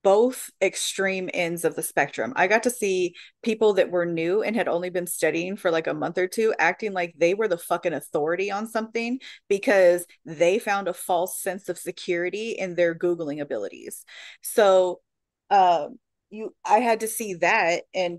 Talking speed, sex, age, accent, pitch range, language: 180 wpm, female, 30-49, American, 175-220 Hz, English